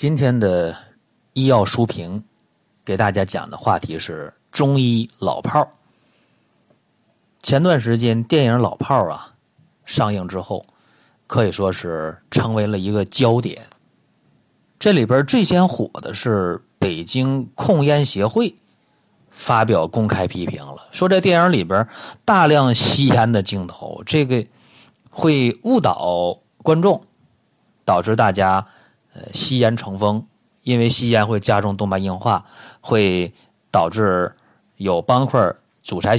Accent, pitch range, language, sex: native, 100-140 Hz, Chinese, male